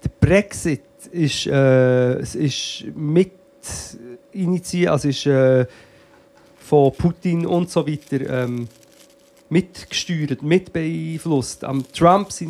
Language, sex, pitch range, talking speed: German, male, 135-170 Hz, 95 wpm